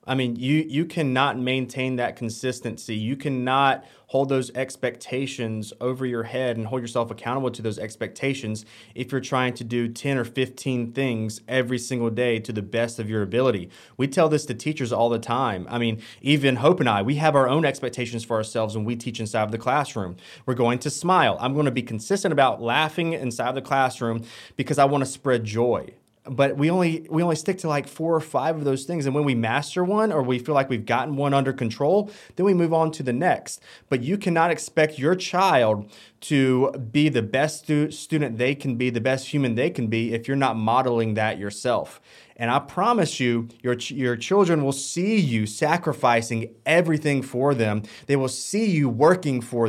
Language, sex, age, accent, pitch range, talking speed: English, male, 30-49, American, 115-150 Hz, 210 wpm